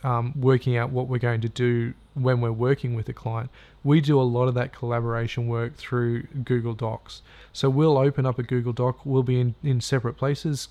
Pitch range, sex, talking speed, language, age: 120-135 Hz, male, 220 wpm, English, 20-39